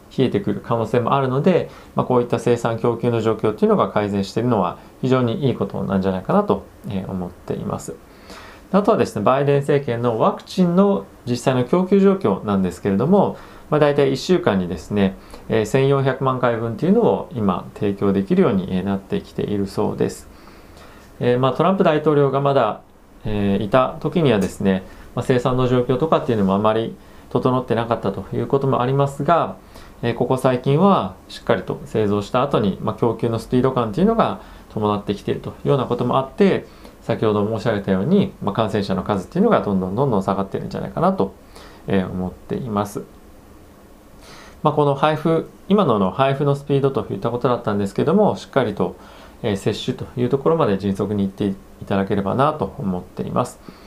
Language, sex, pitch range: Japanese, male, 100-140 Hz